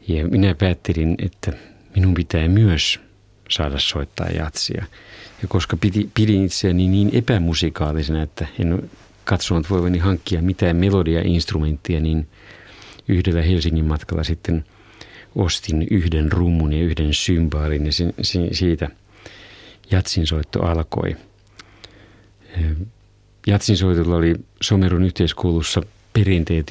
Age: 50-69